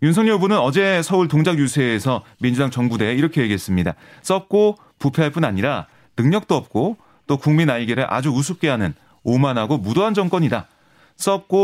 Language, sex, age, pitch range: Korean, male, 30-49, 120-165 Hz